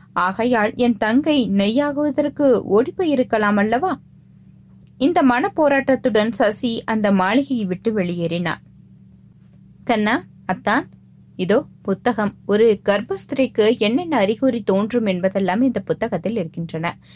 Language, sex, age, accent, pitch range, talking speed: Tamil, female, 20-39, native, 185-255 Hz, 95 wpm